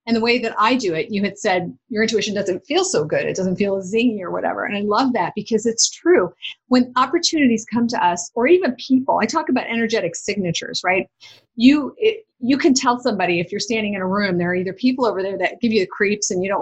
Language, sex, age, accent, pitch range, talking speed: English, female, 30-49, American, 195-255 Hz, 250 wpm